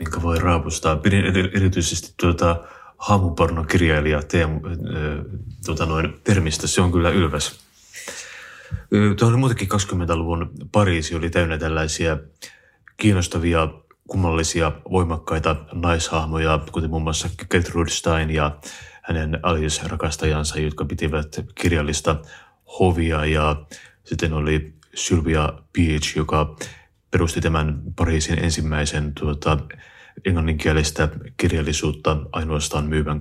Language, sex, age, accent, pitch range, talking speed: Finnish, male, 30-49, native, 75-85 Hz, 95 wpm